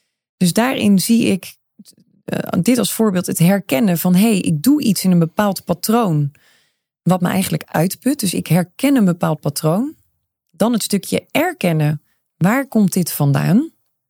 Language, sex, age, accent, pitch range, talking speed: Dutch, female, 30-49, Dutch, 170-225 Hz, 160 wpm